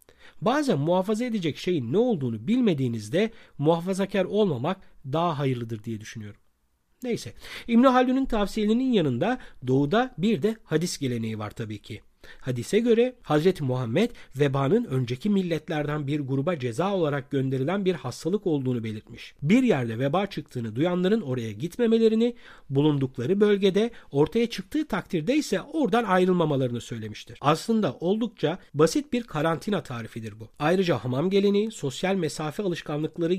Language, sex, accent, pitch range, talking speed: Turkish, male, native, 130-215 Hz, 125 wpm